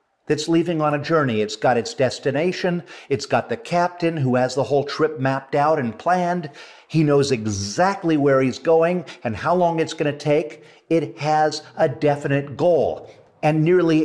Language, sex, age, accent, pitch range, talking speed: English, male, 50-69, American, 150-190 Hz, 180 wpm